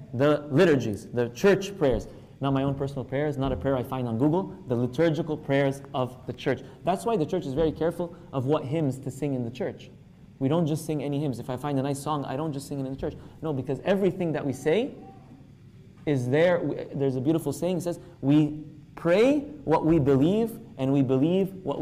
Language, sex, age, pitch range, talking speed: English, male, 20-39, 125-150 Hz, 225 wpm